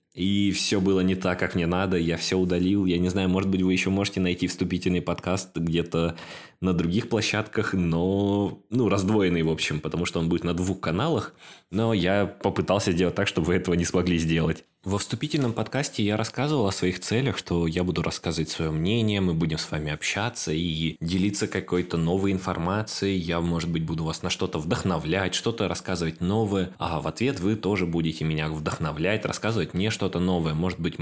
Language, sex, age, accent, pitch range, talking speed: Russian, male, 20-39, native, 90-110 Hz, 190 wpm